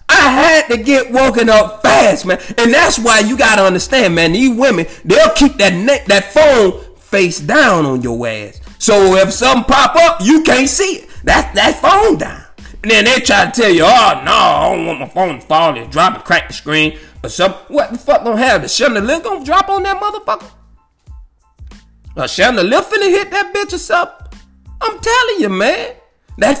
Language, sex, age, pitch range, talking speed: English, male, 30-49, 185-300 Hz, 215 wpm